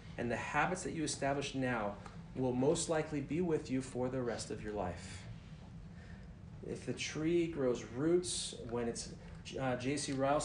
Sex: male